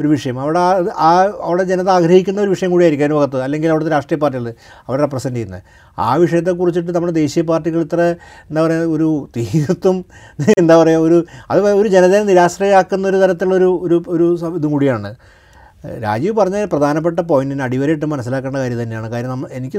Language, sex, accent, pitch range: Malayalam, male, native, 145-180 Hz